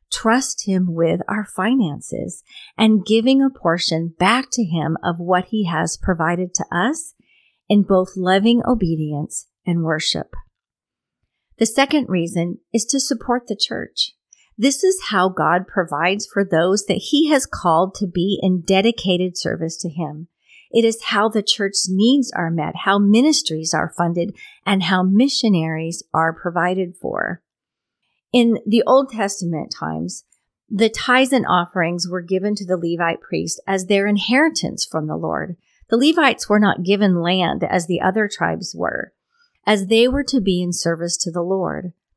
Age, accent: 40-59, American